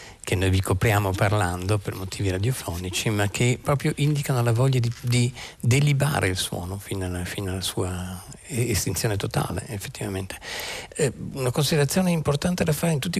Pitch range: 100-140 Hz